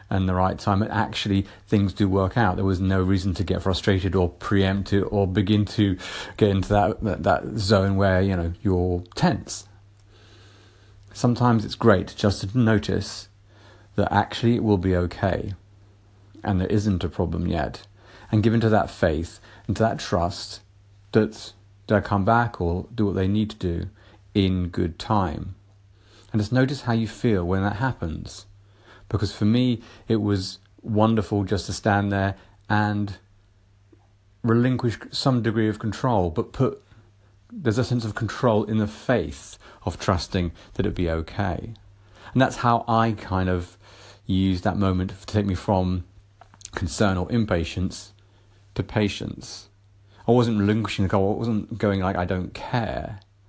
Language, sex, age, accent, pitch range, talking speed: English, male, 40-59, British, 95-110 Hz, 160 wpm